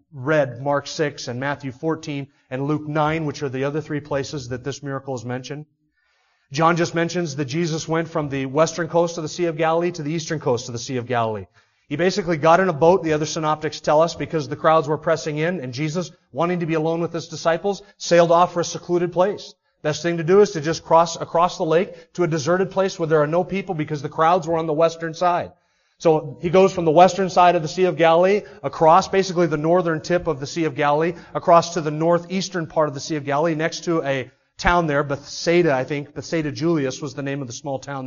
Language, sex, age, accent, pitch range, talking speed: English, male, 30-49, American, 150-180 Hz, 240 wpm